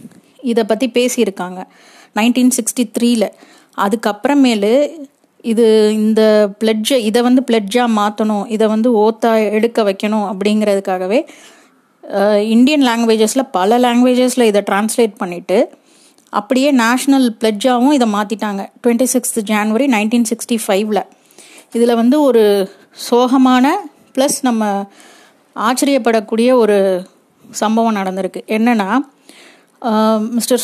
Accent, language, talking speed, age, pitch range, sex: native, Tamil, 95 wpm, 30-49, 215-260 Hz, female